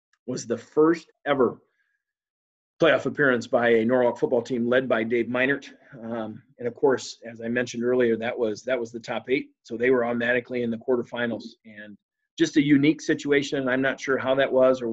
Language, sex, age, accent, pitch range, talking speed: English, male, 40-59, American, 115-140 Hz, 200 wpm